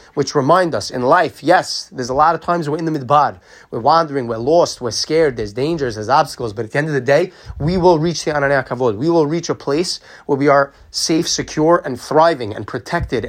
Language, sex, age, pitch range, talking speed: English, male, 30-49, 130-170 Hz, 235 wpm